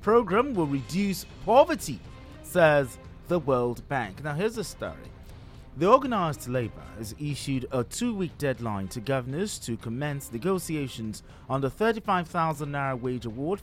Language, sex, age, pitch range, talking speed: English, male, 30-49, 115-175 Hz, 135 wpm